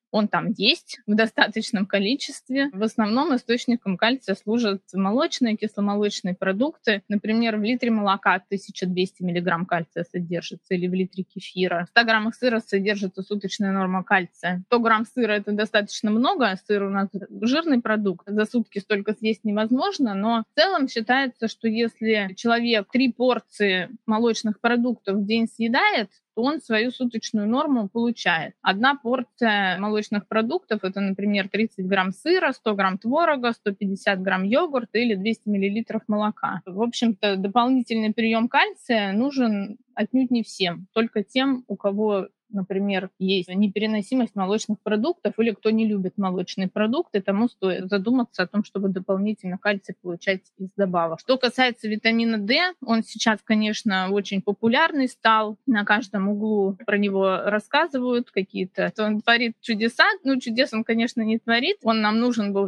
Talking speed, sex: 150 wpm, female